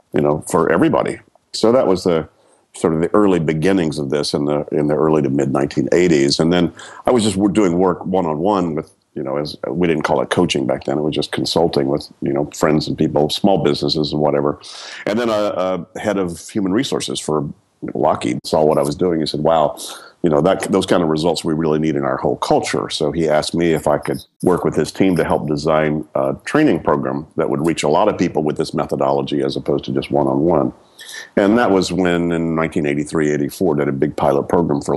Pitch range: 75-85 Hz